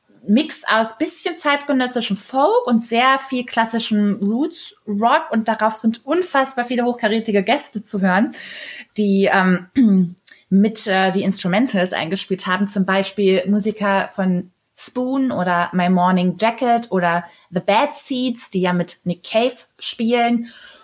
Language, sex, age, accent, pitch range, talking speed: German, female, 20-39, German, 190-235 Hz, 135 wpm